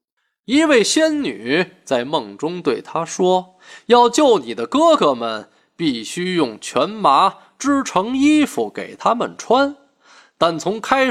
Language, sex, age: Chinese, male, 20-39